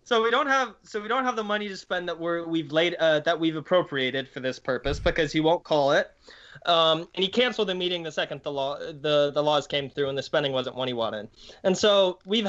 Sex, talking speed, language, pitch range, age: male, 255 wpm, English, 150-195 Hz, 20-39